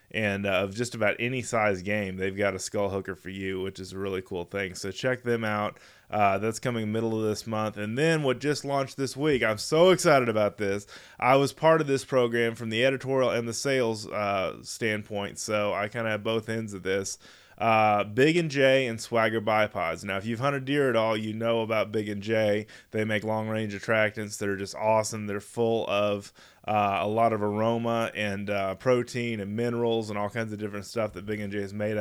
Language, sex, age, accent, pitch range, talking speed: English, male, 20-39, American, 105-120 Hz, 225 wpm